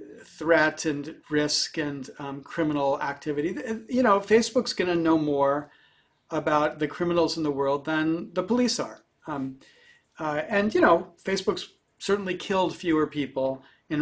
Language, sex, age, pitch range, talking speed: English, male, 40-59, 145-200 Hz, 150 wpm